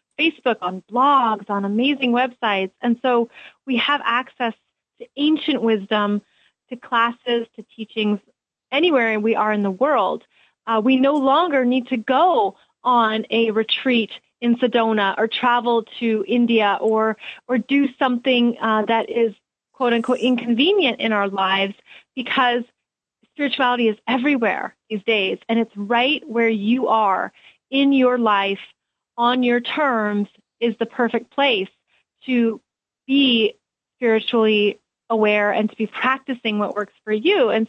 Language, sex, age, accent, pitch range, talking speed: English, female, 30-49, American, 220-260 Hz, 140 wpm